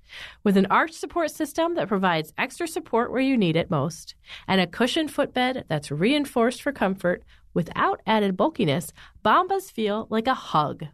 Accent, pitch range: American, 165-265 Hz